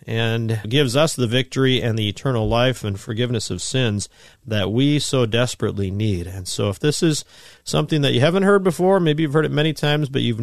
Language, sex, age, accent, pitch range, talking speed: English, male, 40-59, American, 105-145 Hz, 215 wpm